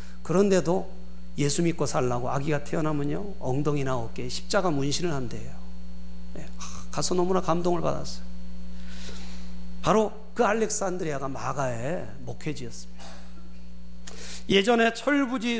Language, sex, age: Korean, male, 40-59